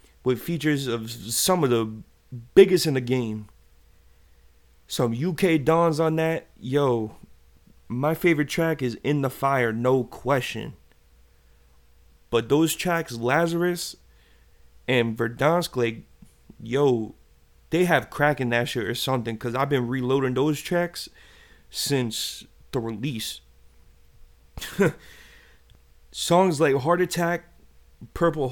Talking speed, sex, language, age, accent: 115 wpm, male, English, 30-49, American